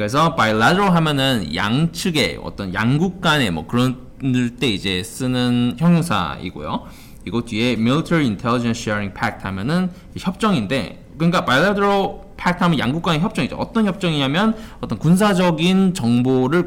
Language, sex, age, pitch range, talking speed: English, male, 20-39, 110-180 Hz, 120 wpm